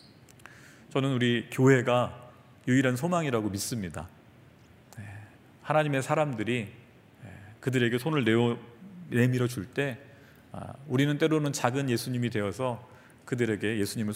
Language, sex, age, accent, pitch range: Korean, male, 40-59, native, 110-140 Hz